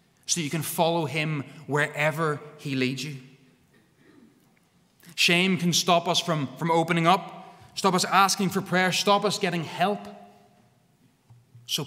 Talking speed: 135 wpm